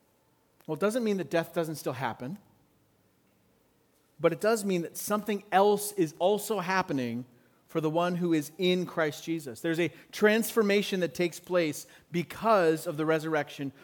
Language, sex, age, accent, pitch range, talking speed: English, male, 40-59, American, 155-205 Hz, 160 wpm